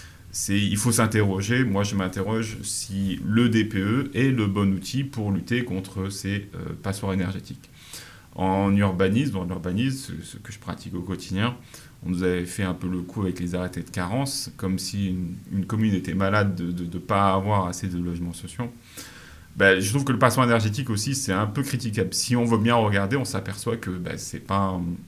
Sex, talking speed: male, 205 wpm